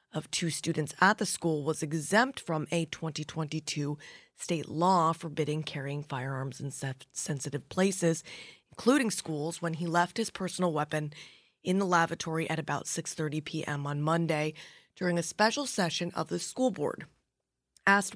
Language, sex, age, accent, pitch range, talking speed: English, female, 20-39, American, 160-190 Hz, 150 wpm